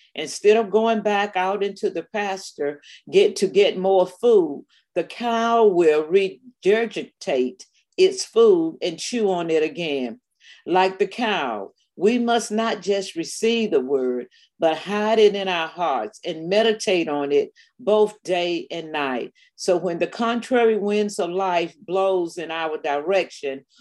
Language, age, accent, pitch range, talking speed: English, 50-69, American, 165-225 Hz, 145 wpm